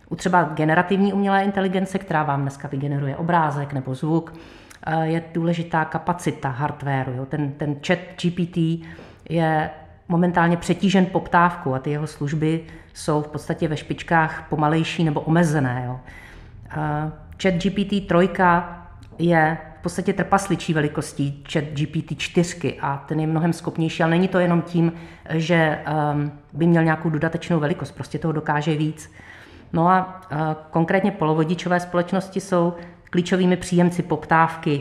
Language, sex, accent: Czech, female, native